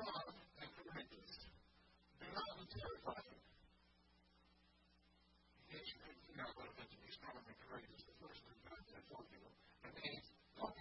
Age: 40-59